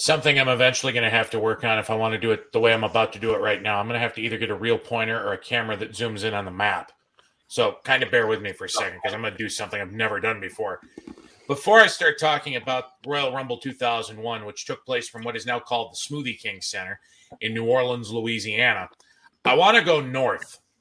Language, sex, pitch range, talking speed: English, male, 110-140 Hz, 260 wpm